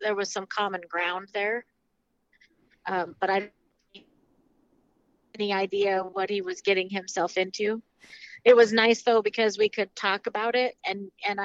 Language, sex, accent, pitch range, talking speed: English, female, American, 185-210 Hz, 160 wpm